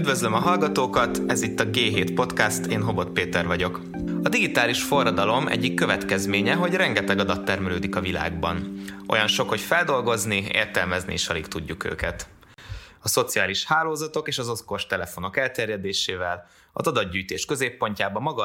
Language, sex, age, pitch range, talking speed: Hungarian, male, 20-39, 95-125 Hz, 145 wpm